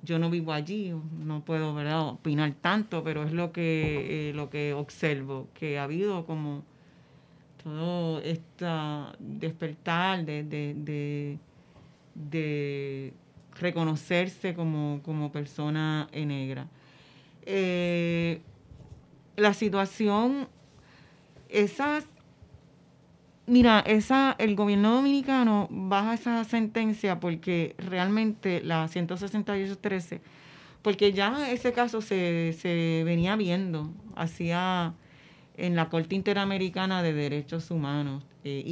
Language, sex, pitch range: Spanish, female, 150-190 Hz